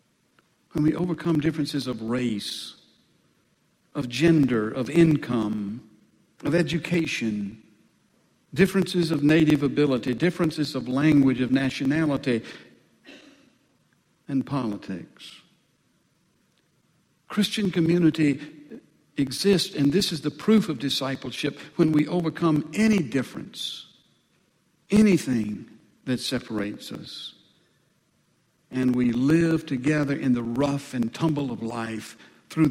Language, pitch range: English, 120-165 Hz